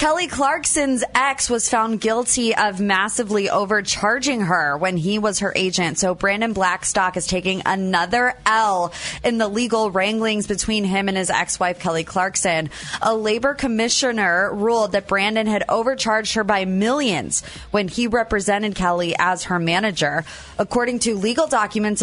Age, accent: 20-39, American